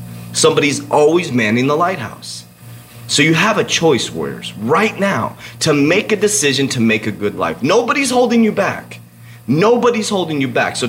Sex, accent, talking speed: male, American, 170 wpm